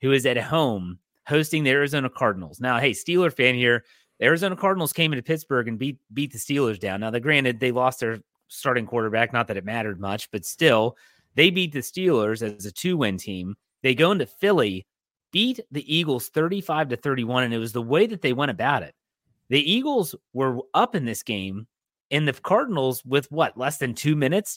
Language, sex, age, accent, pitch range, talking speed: English, male, 30-49, American, 115-155 Hz, 205 wpm